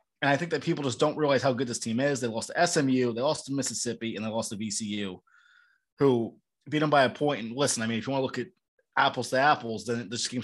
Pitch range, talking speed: 125-160 Hz, 275 wpm